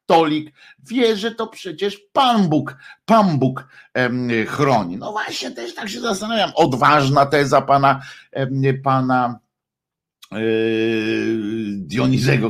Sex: male